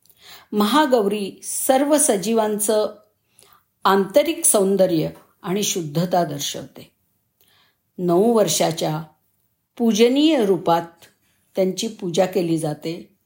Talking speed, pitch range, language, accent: 70 wpm, 170-230 Hz, Marathi, native